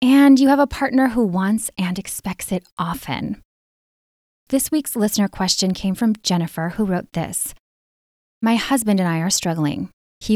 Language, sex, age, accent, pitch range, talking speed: English, female, 10-29, American, 170-215 Hz, 160 wpm